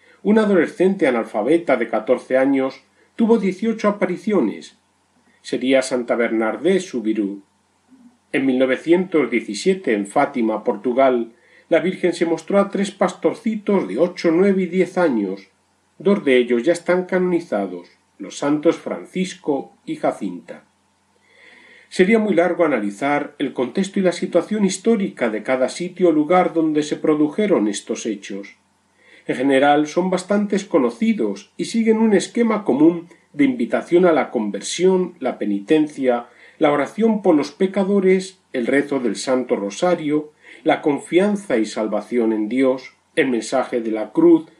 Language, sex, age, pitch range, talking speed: Spanish, male, 40-59, 125-185 Hz, 135 wpm